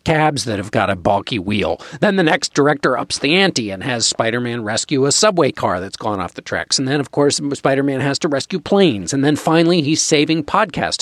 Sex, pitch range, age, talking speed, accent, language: male, 110-170 Hz, 50-69, 225 wpm, American, English